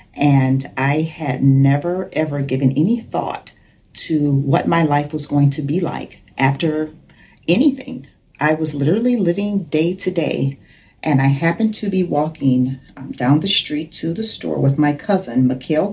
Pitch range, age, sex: 135-170 Hz, 40-59, female